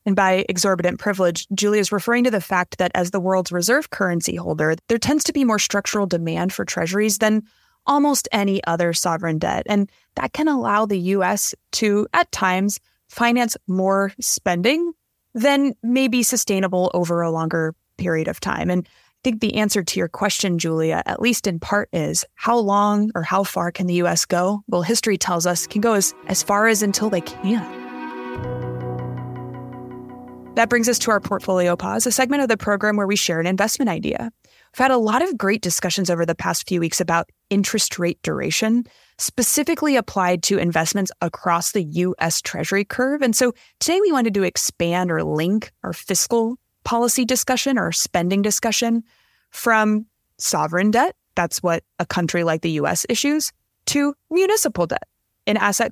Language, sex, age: English, female, 20-39